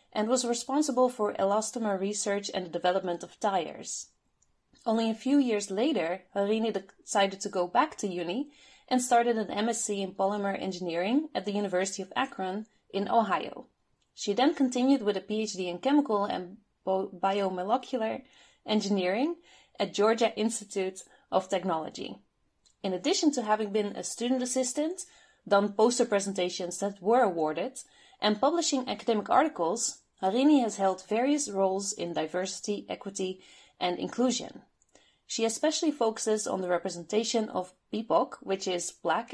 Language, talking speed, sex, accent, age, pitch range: English, 140 wpm, female, Dutch, 30-49, 190-245 Hz